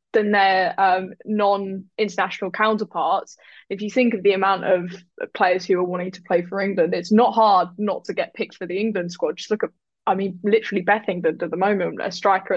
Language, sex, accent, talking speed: English, female, British, 210 wpm